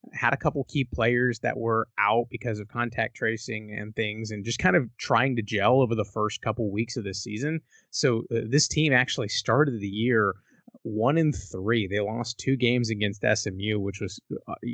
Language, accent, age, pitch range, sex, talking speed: English, American, 20-39, 105-120 Hz, male, 200 wpm